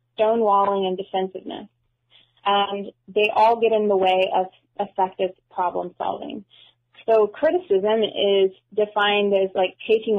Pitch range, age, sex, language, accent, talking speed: 185-215 Hz, 20-39, female, English, American, 125 wpm